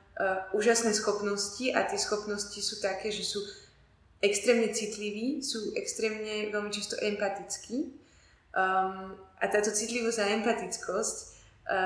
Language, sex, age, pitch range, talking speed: Slovak, female, 20-39, 190-215 Hz, 120 wpm